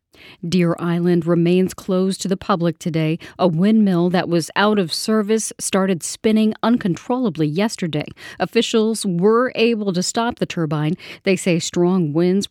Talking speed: 145 wpm